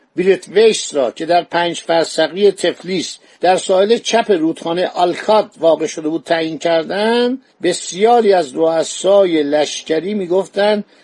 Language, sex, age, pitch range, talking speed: Persian, male, 60-79, 160-210 Hz, 125 wpm